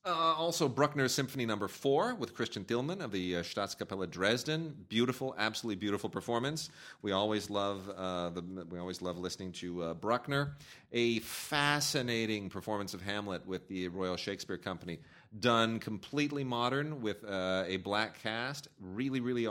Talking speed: 155 wpm